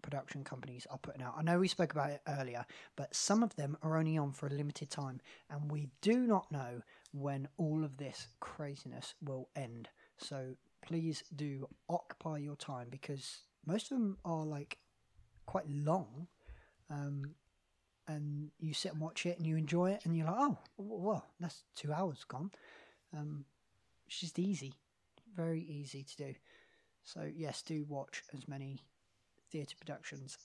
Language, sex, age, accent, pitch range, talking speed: English, male, 30-49, British, 140-175 Hz, 170 wpm